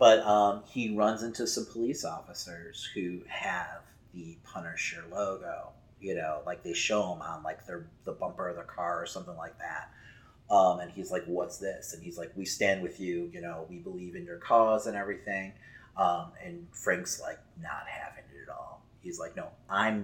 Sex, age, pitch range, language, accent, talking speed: male, 30-49, 95-120 Hz, English, American, 200 wpm